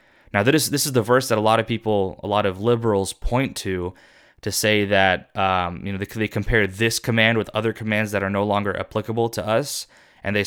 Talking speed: 220 wpm